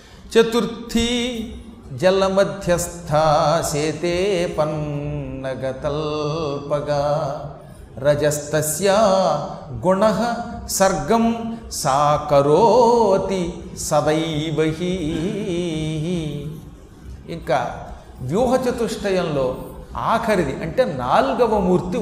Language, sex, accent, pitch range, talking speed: Telugu, male, native, 155-215 Hz, 35 wpm